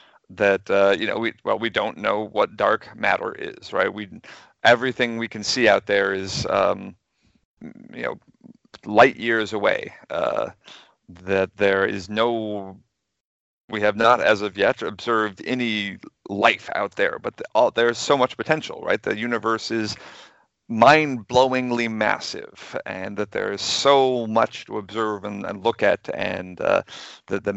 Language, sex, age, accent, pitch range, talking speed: English, male, 40-59, American, 100-115 Hz, 160 wpm